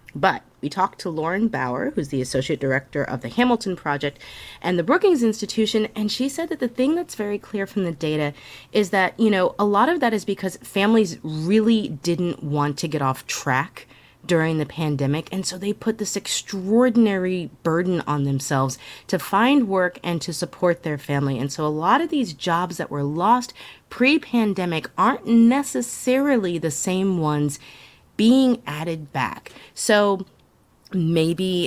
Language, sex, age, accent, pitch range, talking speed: English, female, 30-49, American, 150-205 Hz, 170 wpm